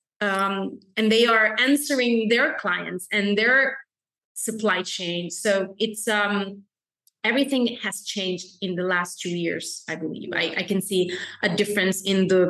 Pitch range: 185-220 Hz